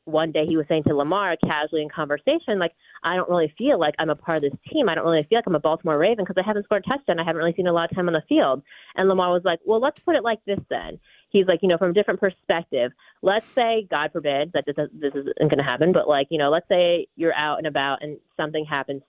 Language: English